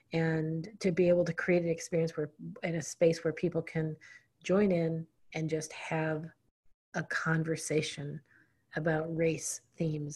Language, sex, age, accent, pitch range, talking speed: English, female, 40-59, American, 155-175 Hz, 150 wpm